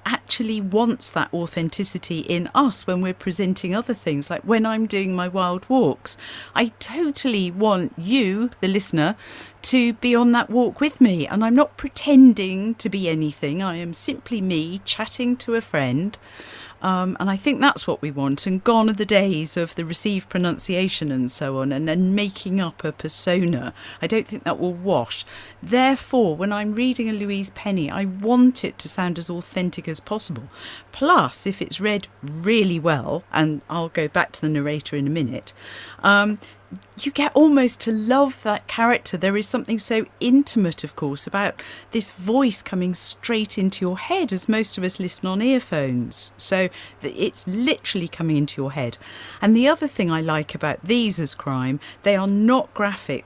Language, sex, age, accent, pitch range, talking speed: English, female, 50-69, British, 170-225 Hz, 180 wpm